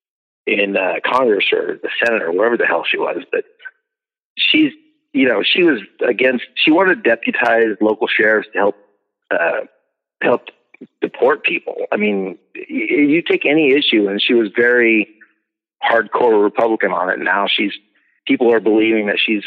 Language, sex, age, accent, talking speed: English, male, 50-69, American, 165 wpm